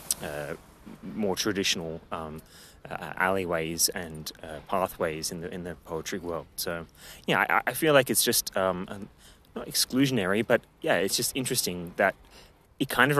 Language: English